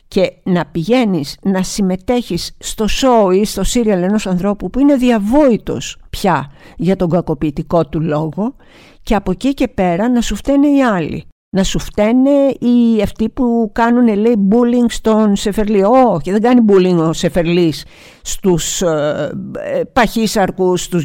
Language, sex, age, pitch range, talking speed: Greek, female, 50-69, 175-240 Hz, 150 wpm